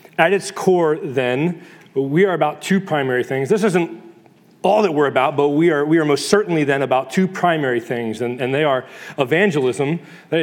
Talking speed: 195 wpm